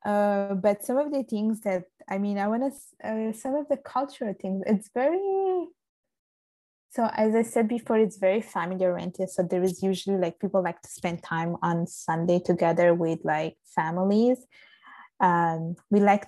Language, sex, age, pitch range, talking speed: English, female, 20-39, 180-220 Hz, 175 wpm